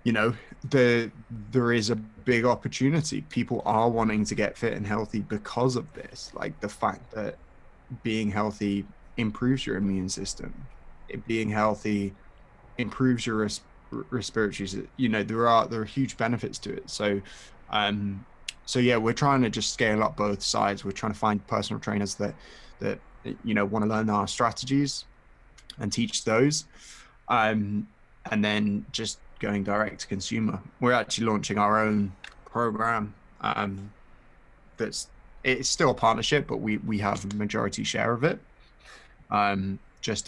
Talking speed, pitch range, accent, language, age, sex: 155 wpm, 100-120 Hz, British, English, 20-39, male